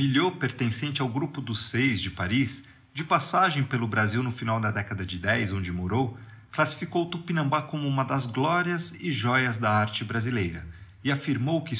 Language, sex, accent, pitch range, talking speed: Portuguese, male, Brazilian, 110-140 Hz, 175 wpm